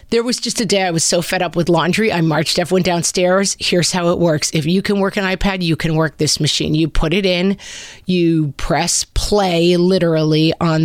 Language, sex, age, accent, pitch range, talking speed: English, female, 30-49, American, 165-215 Hz, 225 wpm